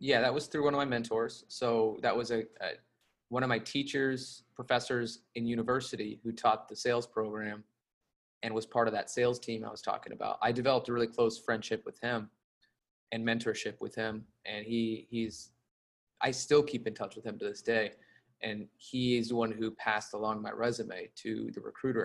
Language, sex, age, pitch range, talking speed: English, male, 20-39, 110-125 Hz, 200 wpm